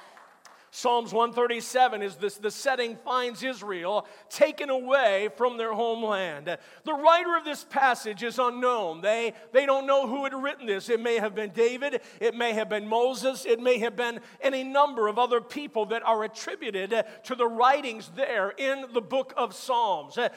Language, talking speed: English, 175 wpm